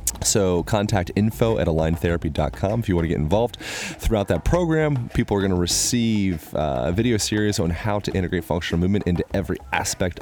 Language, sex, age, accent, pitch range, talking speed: English, male, 30-49, American, 85-110 Hz, 180 wpm